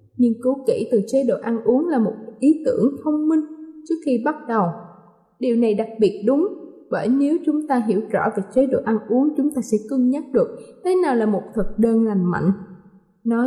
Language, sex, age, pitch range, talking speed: Vietnamese, female, 20-39, 220-285 Hz, 220 wpm